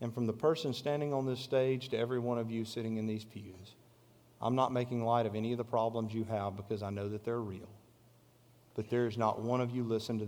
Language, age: English, 40-59